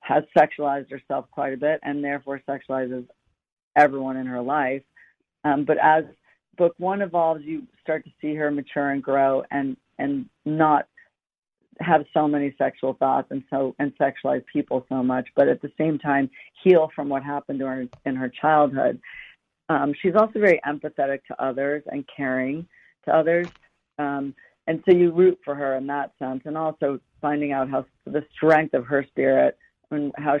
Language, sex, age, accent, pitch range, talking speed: English, female, 50-69, American, 135-155 Hz, 175 wpm